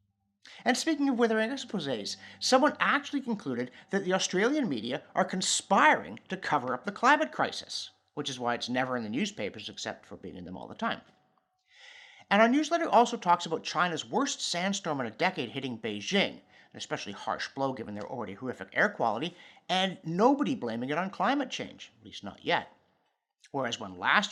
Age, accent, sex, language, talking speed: 50-69, American, male, English, 185 wpm